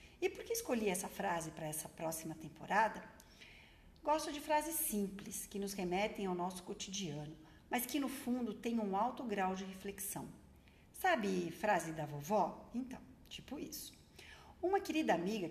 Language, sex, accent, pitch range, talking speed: Portuguese, female, Brazilian, 175-245 Hz, 155 wpm